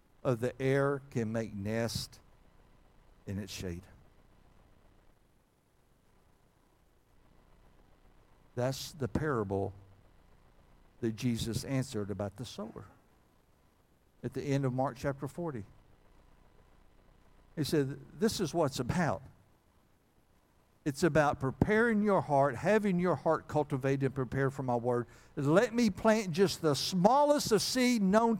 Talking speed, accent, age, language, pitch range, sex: 115 wpm, American, 60-79, English, 110-145 Hz, male